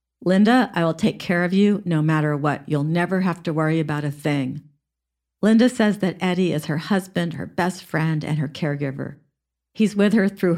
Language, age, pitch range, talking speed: English, 50-69, 150-195 Hz, 200 wpm